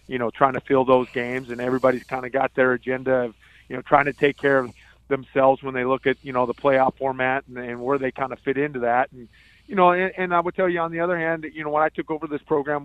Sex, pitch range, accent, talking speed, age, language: male, 125-140 Hz, American, 290 wpm, 30-49, English